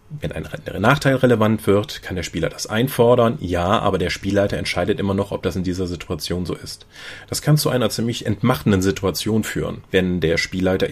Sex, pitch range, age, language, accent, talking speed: male, 95-120 Hz, 30-49, German, German, 190 wpm